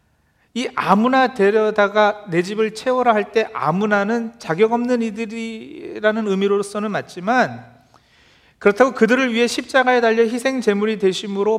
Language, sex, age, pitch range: Korean, male, 40-59, 190-235 Hz